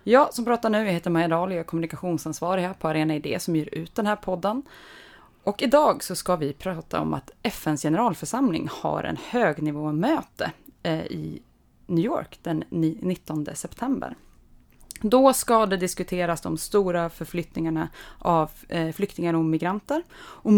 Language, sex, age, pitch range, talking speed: Swedish, female, 20-39, 160-205 Hz, 150 wpm